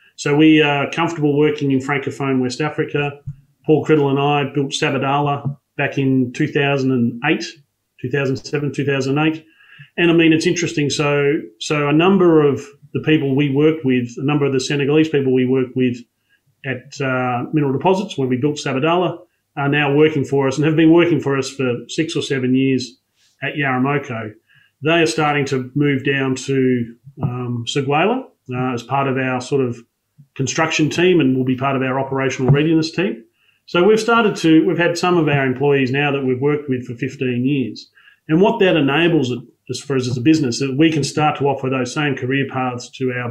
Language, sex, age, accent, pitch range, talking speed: English, male, 30-49, Australian, 130-155 Hz, 190 wpm